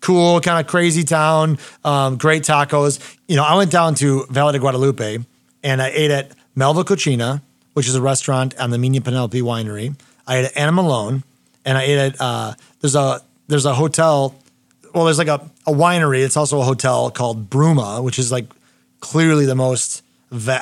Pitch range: 125-145 Hz